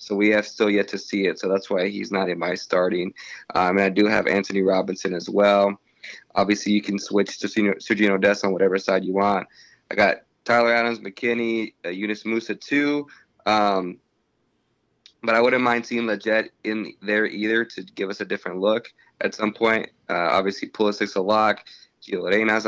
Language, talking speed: English, 190 wpm